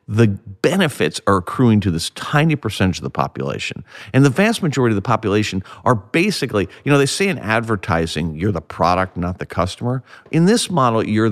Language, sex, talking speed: English, male, 190 wpm